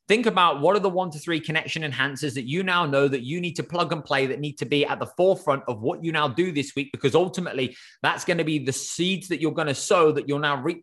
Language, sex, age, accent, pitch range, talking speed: English, male, 20-39, British, 140-165 Hz, 290 wpm